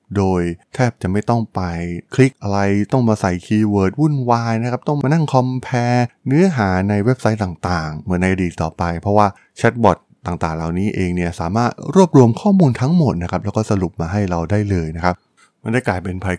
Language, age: Thai, 20-39